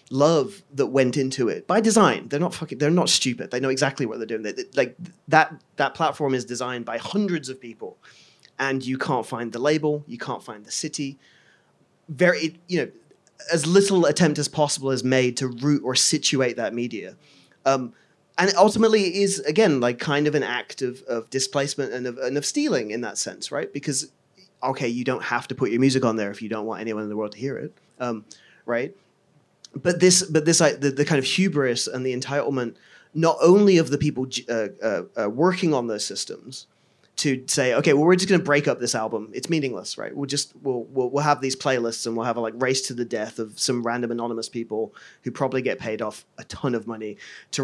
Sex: male